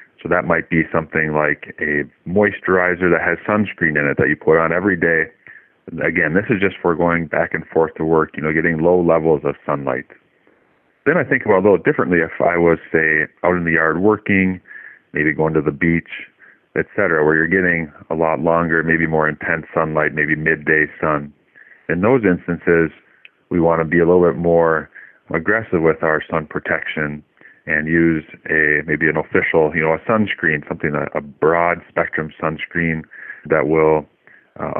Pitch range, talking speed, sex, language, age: 80-85 Hz, 185 wpm, male, English, 30-49